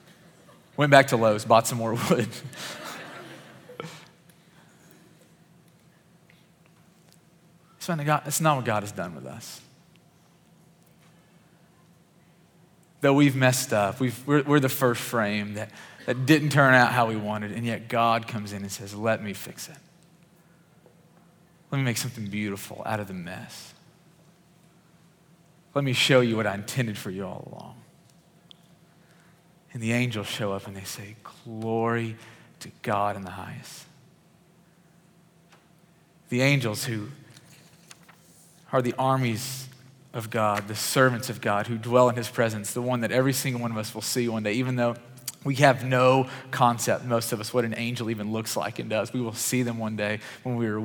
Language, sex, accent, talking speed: English, male, American, 155 wpm